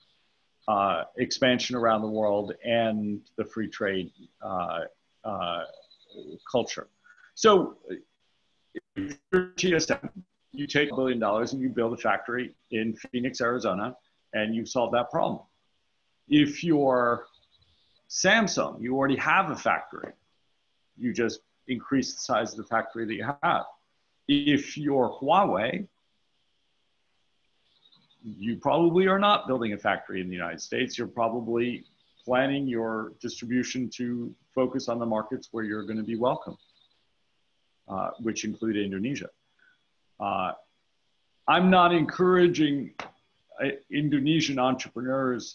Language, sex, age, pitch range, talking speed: English, male, 50-69, 110-140 Hz, 125 wpm